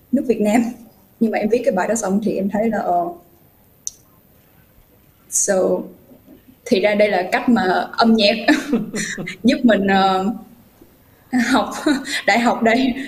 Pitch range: 185-240 Hz